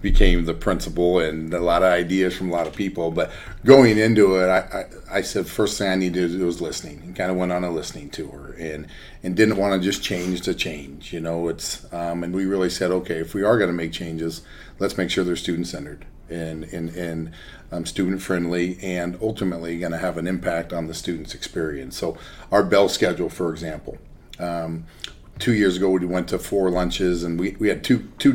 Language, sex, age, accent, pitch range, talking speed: English, male, 40-59, American, 85-100 Hz, 225 wpm